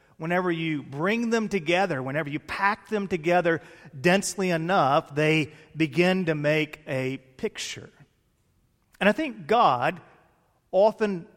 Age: 40-59